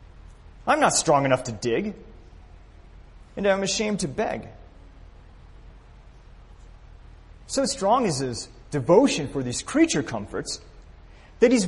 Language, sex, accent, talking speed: English, male, American, 115 wpm